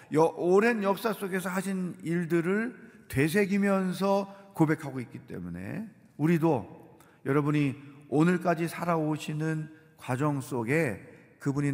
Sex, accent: male, native